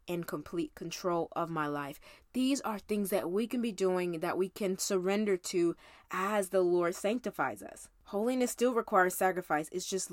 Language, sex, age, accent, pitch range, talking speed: English, female, 20-39, American, 175-230 Hz, 180 wpm